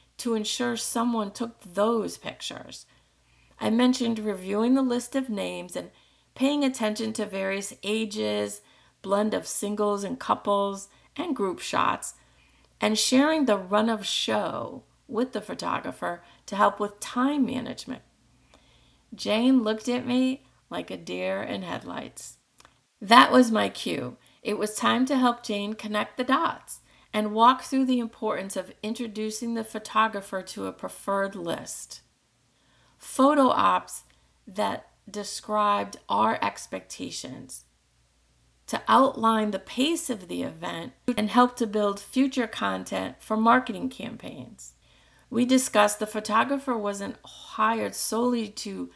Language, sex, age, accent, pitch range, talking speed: English, female, 40-59, American, 200-245 Hz, 130 wpm